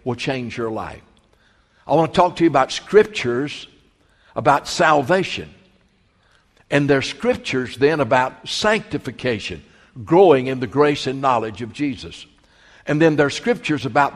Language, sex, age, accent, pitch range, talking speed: English, male, 60-79, American, 125-175 Hz, 150 wpm